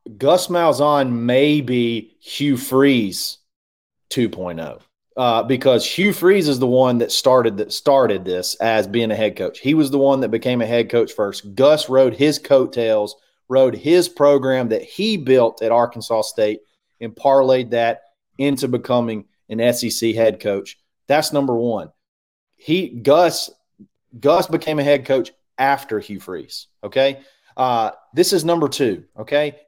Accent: American